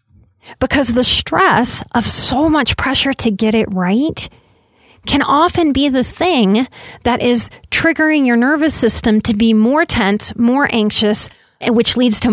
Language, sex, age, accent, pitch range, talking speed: English, female, 30-49, American, 195-255 Hz, 150 wpm